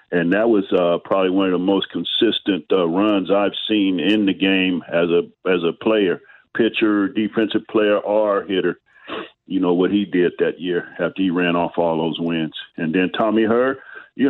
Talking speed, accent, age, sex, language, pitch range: 195 wpm, American, 50-69, male, English, 95-110 Hz